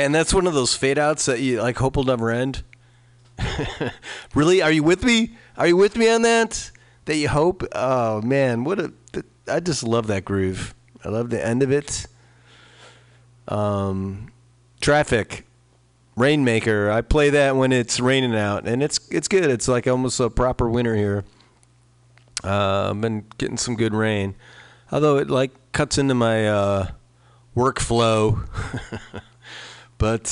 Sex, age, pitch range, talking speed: male, 30-49, 110-135 Hz, 160 wpm